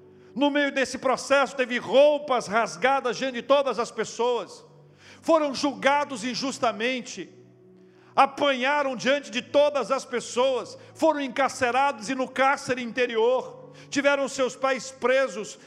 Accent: Brazilian